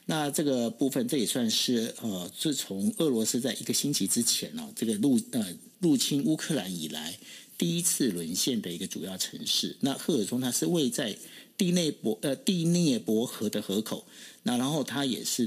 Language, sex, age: Chinese, male, 50-69